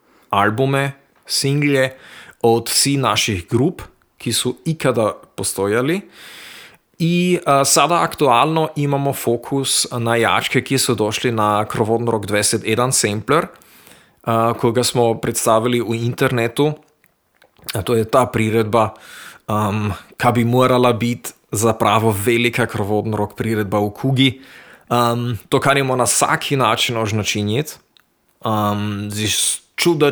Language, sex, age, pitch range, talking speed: Croatian, male, 30-49, 110-135 Hz, 120 wpm